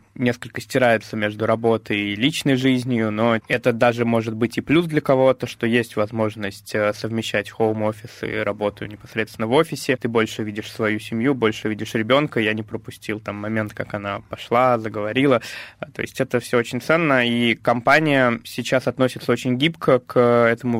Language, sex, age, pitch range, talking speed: Russian, male, 20-39, 110-125 Hz, 165 wpm